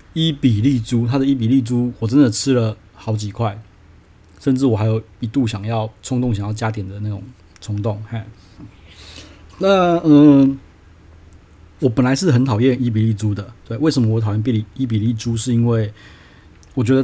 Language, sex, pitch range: Chinese, male, 105-130 Hz